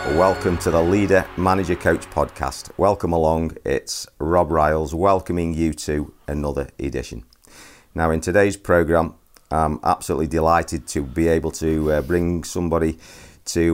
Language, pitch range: English, 80-95 Hz